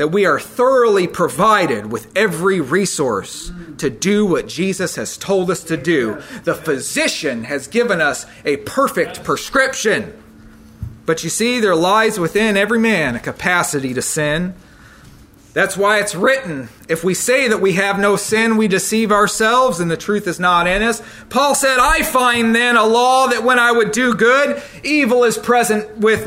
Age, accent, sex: 40-59, American, male